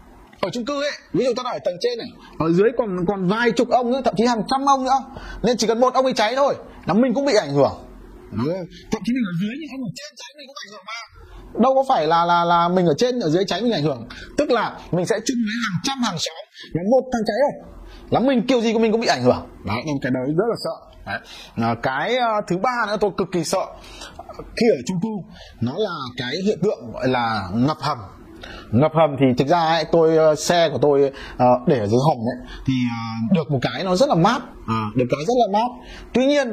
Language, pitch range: Vietnamese, 160-250 Hz